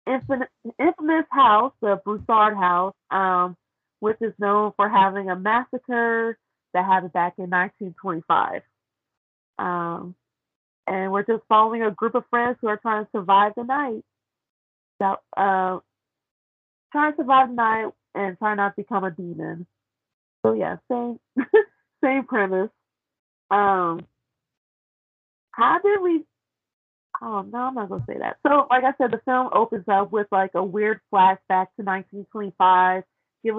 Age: 30-49